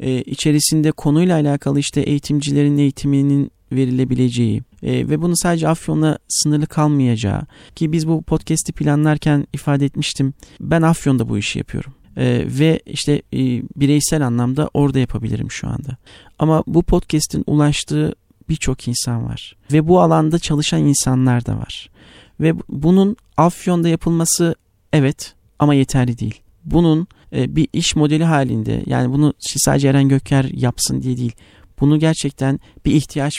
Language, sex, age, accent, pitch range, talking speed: Turkish, male, 40-59, native, 130-160 Hz, 130 wpm